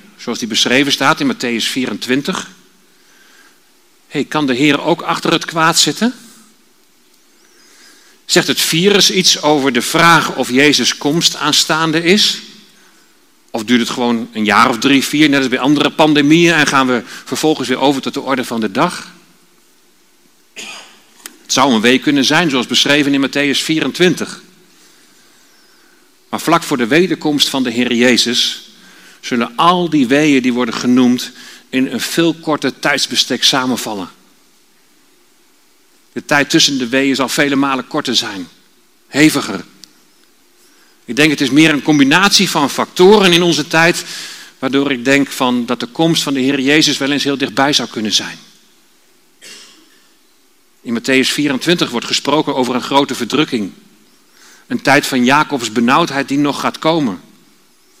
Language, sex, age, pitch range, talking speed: Dutch, male, 40-59, 130-180 Hz, 150 wpm